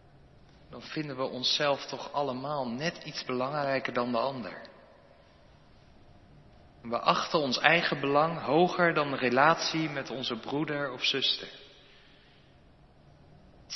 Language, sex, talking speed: Dutch, male, 120 wpm